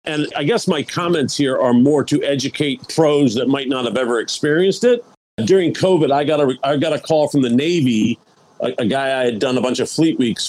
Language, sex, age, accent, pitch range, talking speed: English, male, 50-69, American, 130-170 Hz, 235 wpm